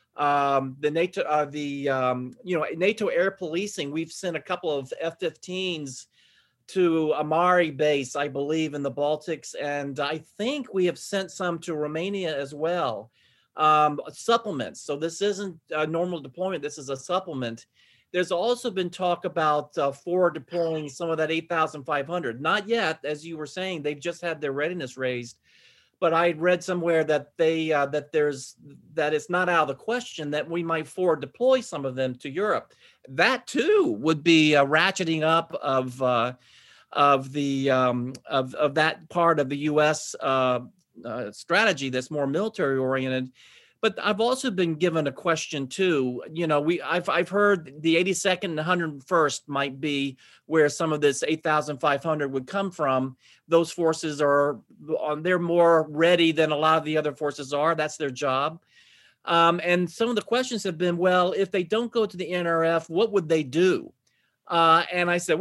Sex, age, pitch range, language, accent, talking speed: male, 40-59, 145-180 Hz, English, American, 180 wpm